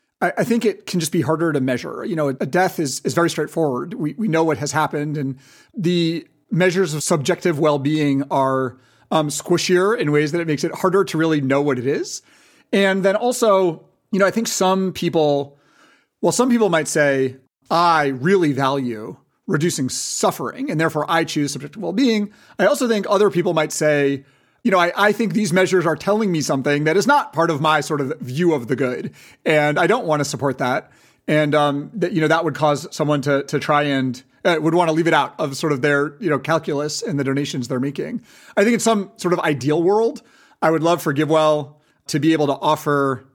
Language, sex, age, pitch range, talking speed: English, male, 30-49, 145-180 Hz, 215 wpm